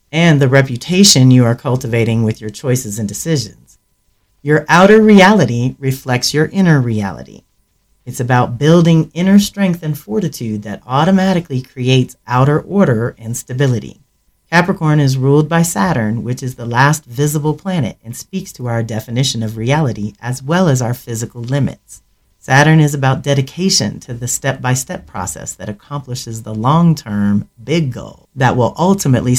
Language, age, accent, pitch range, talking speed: English, 40-59, American, 120-160 Hz, 150 wpm